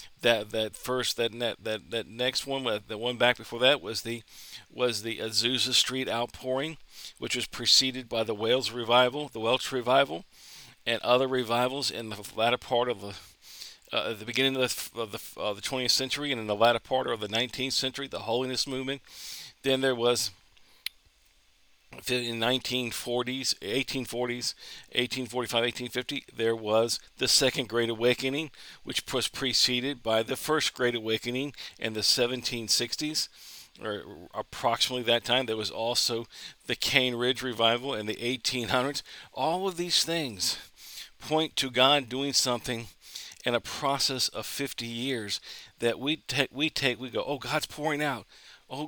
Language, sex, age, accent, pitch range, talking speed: English, male, 50-69, American, 115-135 Hz, 155 wpm